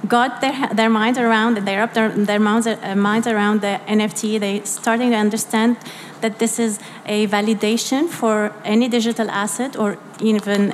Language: English